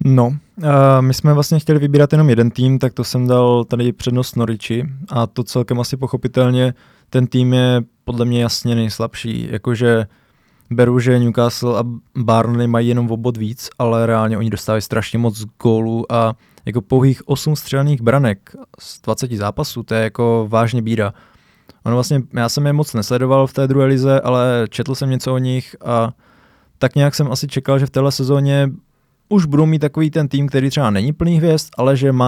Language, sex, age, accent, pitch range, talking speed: Czech, male, 20-39, native, 120-135 Hz, 185 wpm